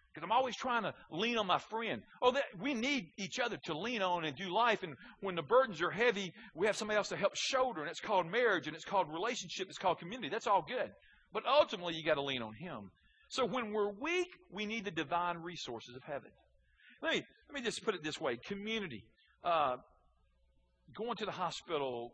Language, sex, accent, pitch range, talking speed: English, male, American, 160-240 Hz, 220 wpm